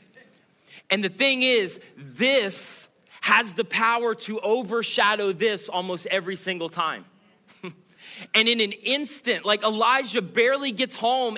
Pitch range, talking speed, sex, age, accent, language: 200-235 Hz, 125 wpm, male, 30-49, American, English